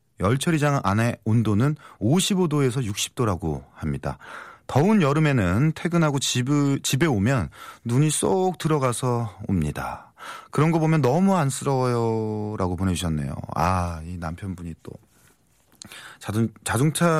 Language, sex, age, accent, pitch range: Korean, male, 30-49, native, 105-170 Hz